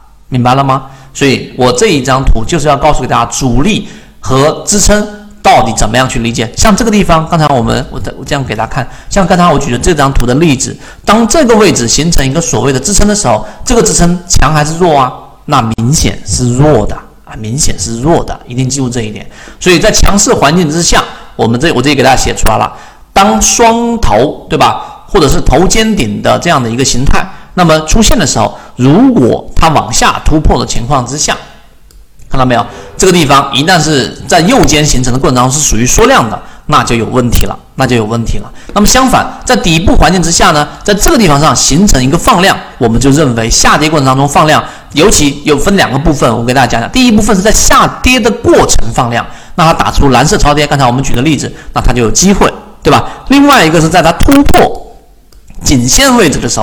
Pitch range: 125-195 Hz